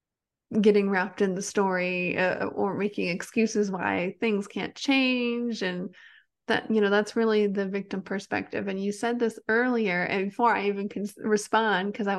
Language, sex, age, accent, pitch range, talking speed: English, female, 20-39, American, 200-240 Hz, 170 wpm